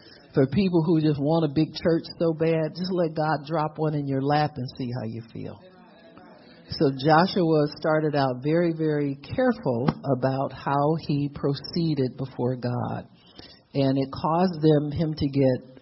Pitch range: 130-155 Hz